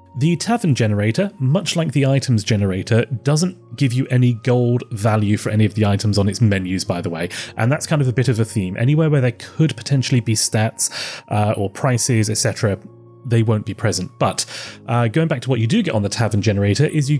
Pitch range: 110-145 Hz